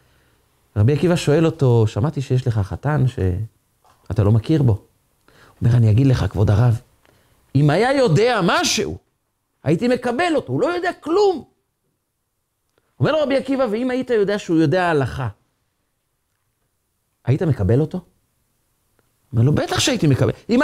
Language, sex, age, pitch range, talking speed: Hebrew, male, 40-59, 105-145 Hz, 140 wpm